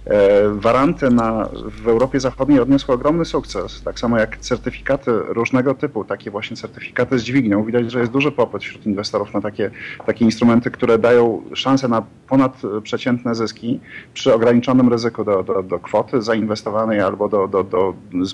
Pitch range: 110-130 Hz